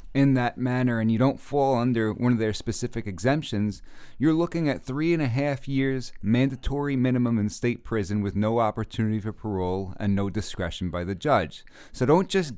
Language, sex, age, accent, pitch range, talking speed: English, male, 30-49, American, 100-125 Hz, 190 wpm